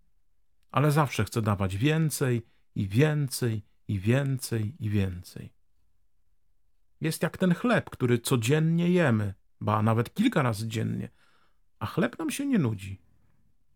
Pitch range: 95-140 Hz